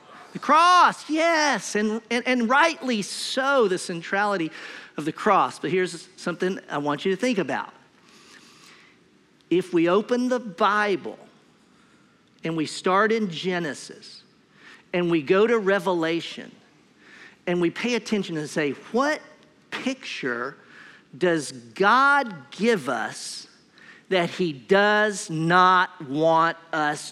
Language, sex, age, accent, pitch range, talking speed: English, male, 50-69, American, 165-230 Hz, 120 wpm